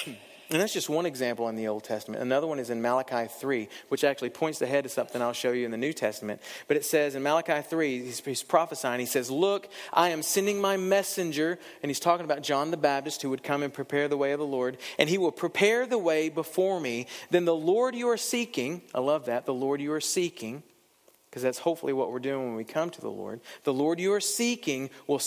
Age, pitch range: 40-59, 130-180 Hz